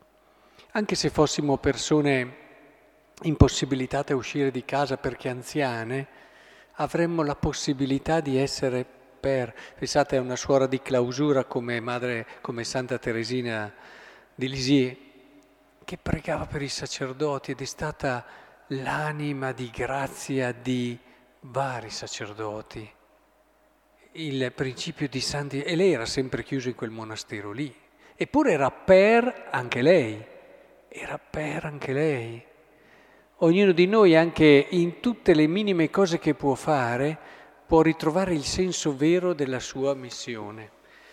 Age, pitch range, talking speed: 50-69, 130-165 Hz, 125 wpm